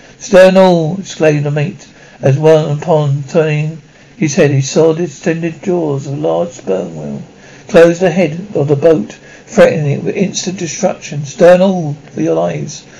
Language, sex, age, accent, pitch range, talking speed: English, male, 60-79, British, 145-175 Hz, 170 wpm